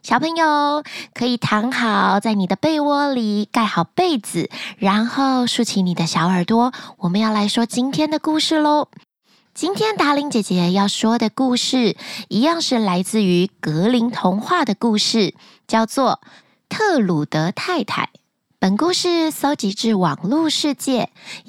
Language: Chinese